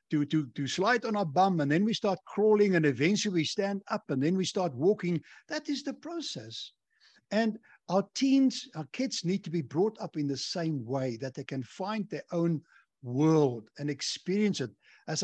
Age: 60-79